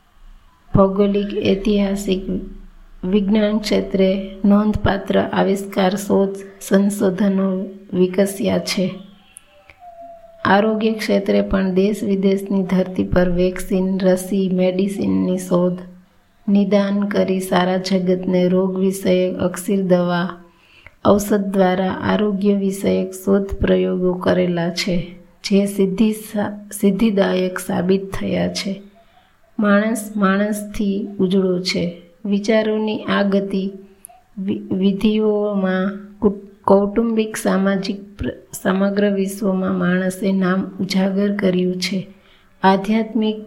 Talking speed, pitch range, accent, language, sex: 90 wpm, 185-205 Hz, native, Gujarati, female